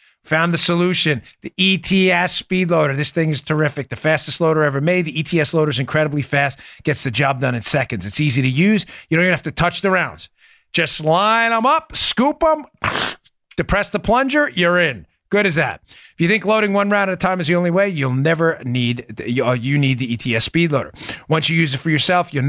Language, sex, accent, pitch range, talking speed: English, male, American, 135-185 Hz, 220 wpm